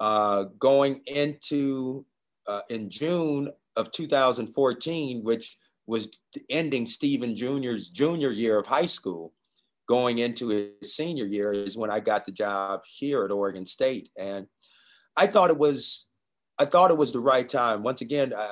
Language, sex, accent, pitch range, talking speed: English, male, American, 105-135 Hz, 150 wpm